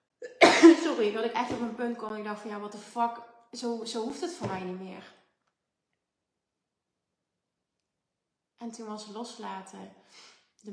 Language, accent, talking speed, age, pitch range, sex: Dutch, Dutch, 160 wpm, 30-49, 190-220 Hz, female